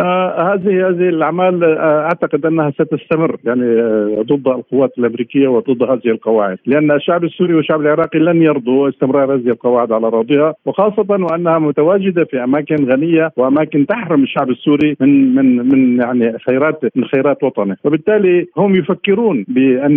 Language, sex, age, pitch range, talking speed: Arabic, male, 50-69, 130-160 Hz, 150 wpm